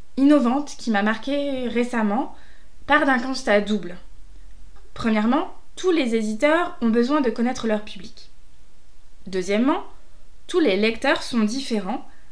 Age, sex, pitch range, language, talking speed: 20-39, female, 215-290 Hz, French, 120 wpm